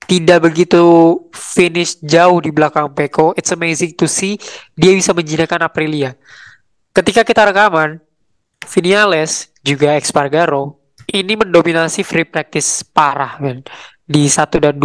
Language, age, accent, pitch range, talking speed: Indonesian, 20-39, native, 155-190 Hz, 120 wpm